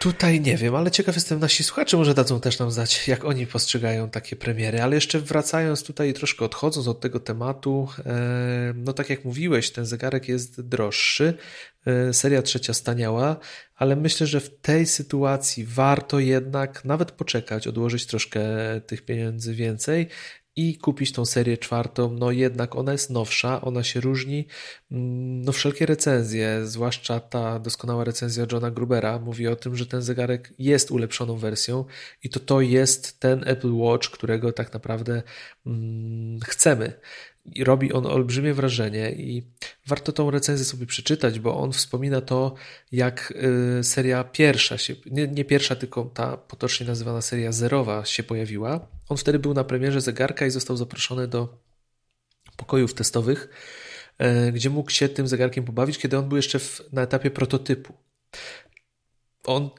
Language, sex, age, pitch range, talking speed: Polish, male, 30-49, 120-140 Hz, 150 wpm